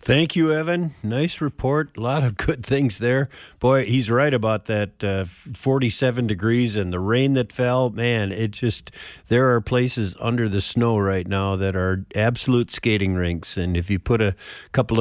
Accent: American